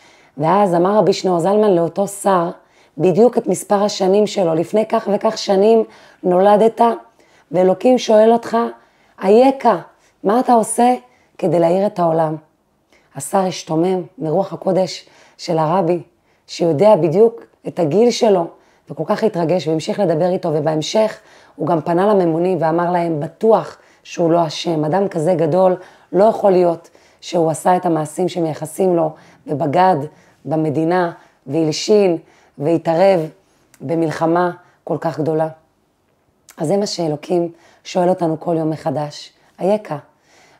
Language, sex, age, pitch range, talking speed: Hebrew, female, 30-49, 165-210 Hz, 125 wpm